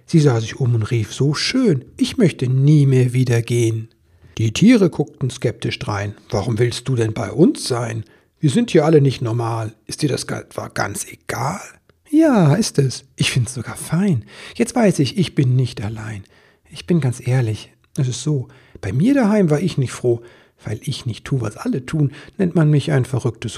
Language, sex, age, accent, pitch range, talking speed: German, male, 60-79, German, 115-150 Hz, 200 wpm